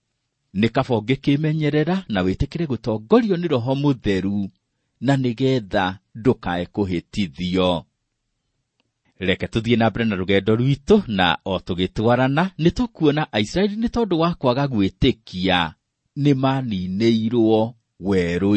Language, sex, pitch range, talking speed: English, male, 95-130 Hz, 105 wpm